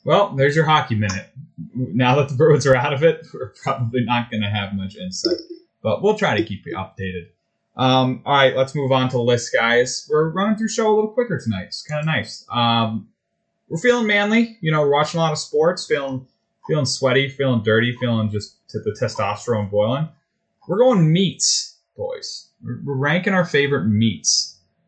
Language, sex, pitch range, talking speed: English, male, 115-155 Hz, 190 wpm